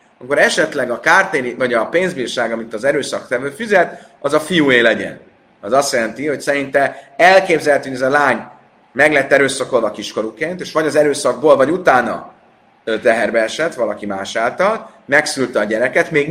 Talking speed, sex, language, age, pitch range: 160 wpm, male, Hungarian, 30-49, 125-170 Hz